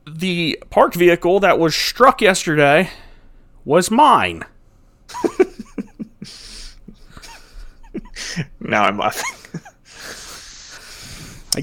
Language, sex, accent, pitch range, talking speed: English, male, American, 135-190 Hz, 65 wpm